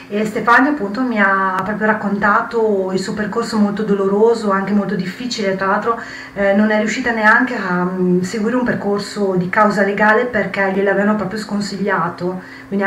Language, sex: Italian, female